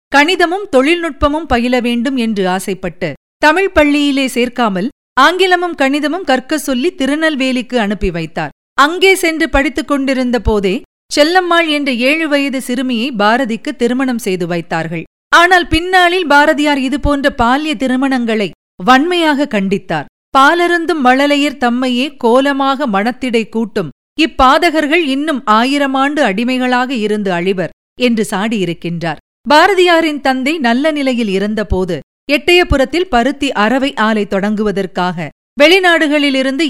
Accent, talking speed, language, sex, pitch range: native, 105 wpm, Tamil, female, 220-300 Hz